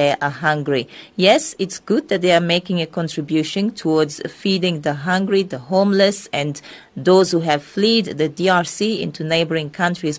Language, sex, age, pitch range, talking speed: English, female, 40-59, 155-195 Hz, 165 wpm